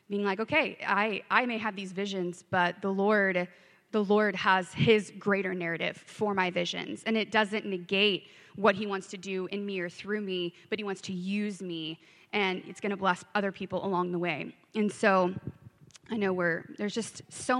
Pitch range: 185-220 Hz